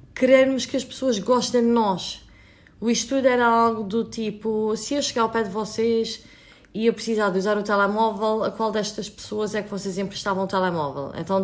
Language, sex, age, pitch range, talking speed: English, female, 20-39, 195-240 Hz, 200 wpm